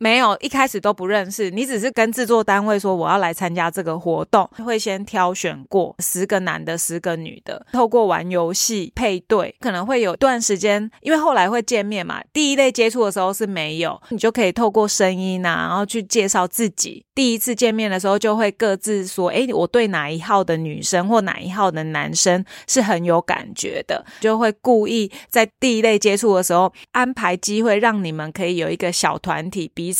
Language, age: Chinese, 20-39